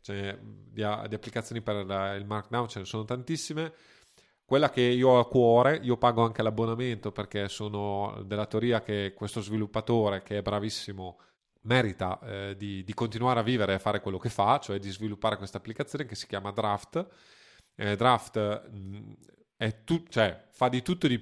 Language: Italian